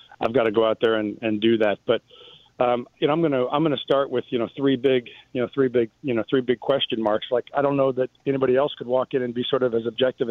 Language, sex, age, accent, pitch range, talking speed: English, male, 40-59, American, 120-135 Hz, 290 wpm